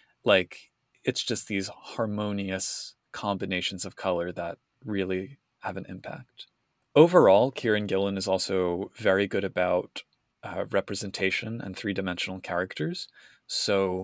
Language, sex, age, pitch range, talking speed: English, male, 20-39, 95-110 Hz, 115 wpm